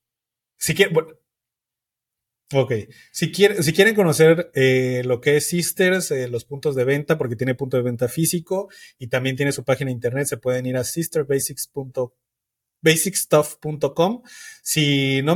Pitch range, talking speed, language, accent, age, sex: 125-165 Hz, 150 wpm, Spanish, Mexican, 30-49, male